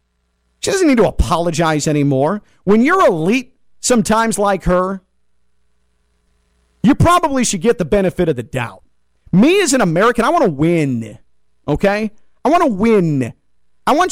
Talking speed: 155 wpm